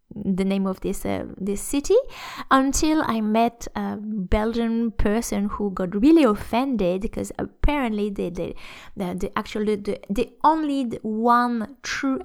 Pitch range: 195-235 Hz